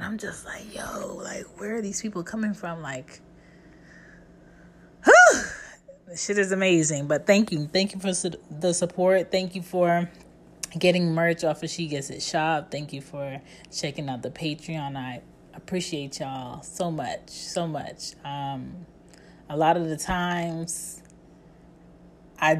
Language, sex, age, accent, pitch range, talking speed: English, female, 20-39, American, 150-175 Hz, 150 wpm